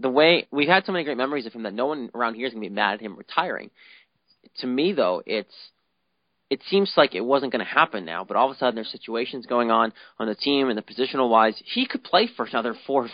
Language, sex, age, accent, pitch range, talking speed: English, male, 20-39, American, 115-150 Hz, 275 wpm